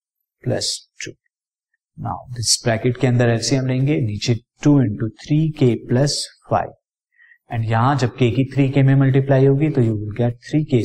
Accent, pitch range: native, 125-150 Hz